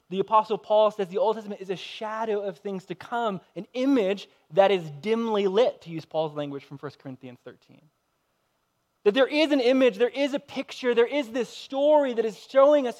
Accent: American